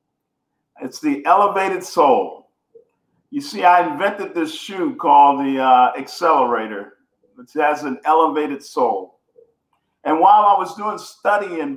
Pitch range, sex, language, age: 135-205 Hz, male, English, 50-69